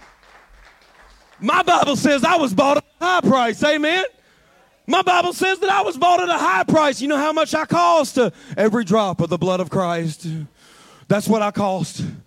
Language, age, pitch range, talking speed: English, 40-59, 215-320 Hz, 190 wpm